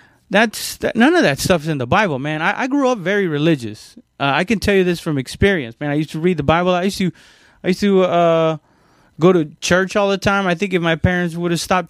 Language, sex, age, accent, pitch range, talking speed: English, male, 30-49, American, 130-190 Hz, 260 wpm